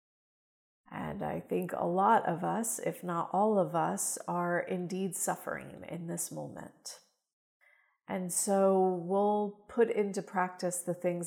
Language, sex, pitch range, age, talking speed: English, female, 175-205 Hz, 40-59, 140 wpm